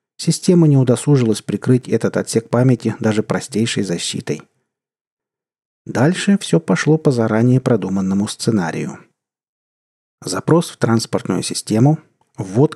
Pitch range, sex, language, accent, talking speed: 105-135 Hz, male, Russian, native, 105 wpm